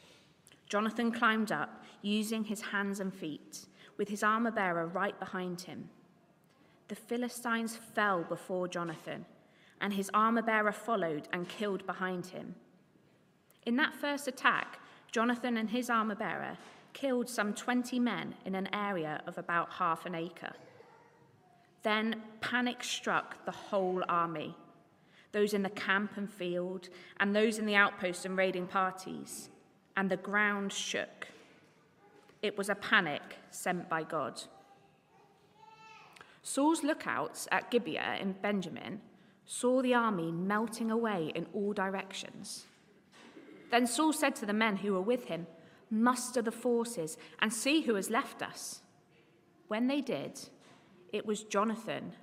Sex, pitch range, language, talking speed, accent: female, 180-225 Hz, English, 140 wpm, British